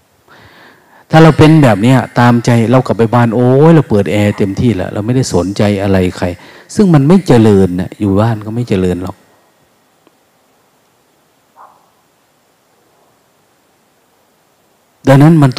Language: Thai